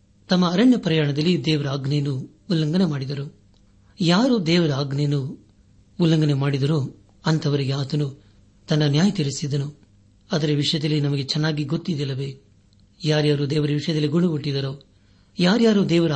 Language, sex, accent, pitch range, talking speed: Kannada, male, native, 105-165 Hz, 110 wpm